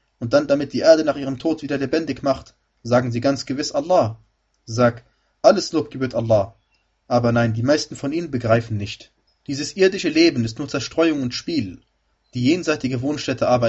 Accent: German